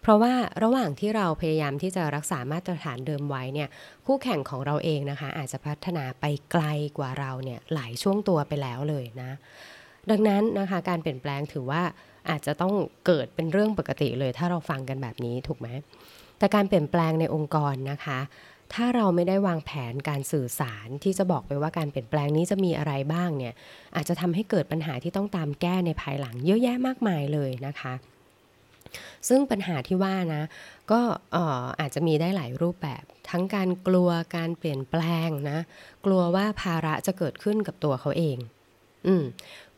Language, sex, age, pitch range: Thai, female, 20-39, 140-185 Hz